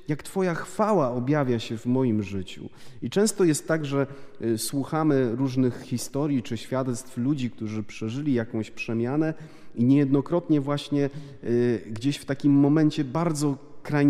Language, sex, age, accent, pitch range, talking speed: Polish, male, 30-49, native, 110-145 Hz, 130 wpm